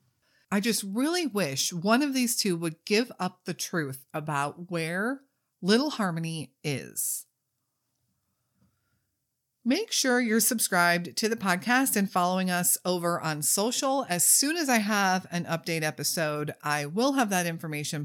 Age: 40-59